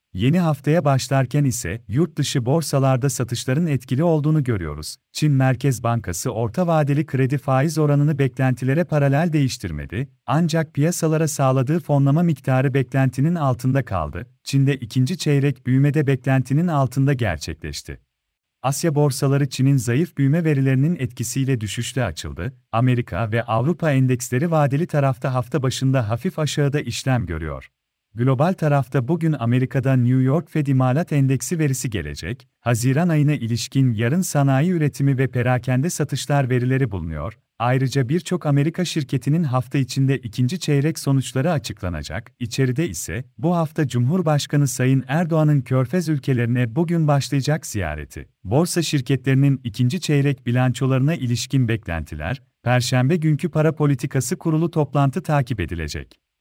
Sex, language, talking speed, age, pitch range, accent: male, Turkish, 125 wpm, 40-59, 125-150 Hz, native